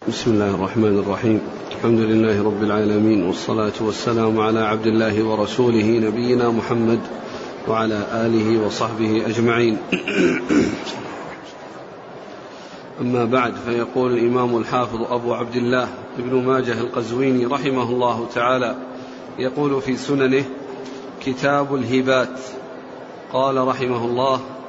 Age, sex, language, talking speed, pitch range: 40-59, male, Arabic, 100 wpm, 120-145 Hz